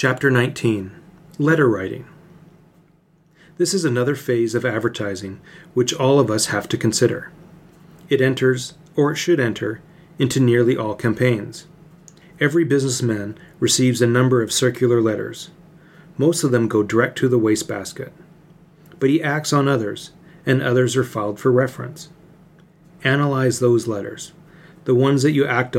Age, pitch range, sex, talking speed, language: 40-59, 120-165 Hz, male, 145 wpm, English